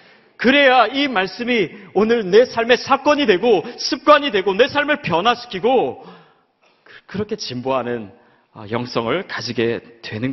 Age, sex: 40-59, male